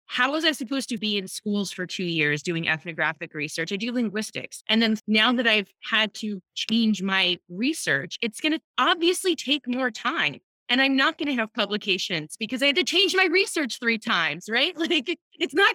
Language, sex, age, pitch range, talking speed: English, female, 20-39, 200-290 Hz, 205 wpm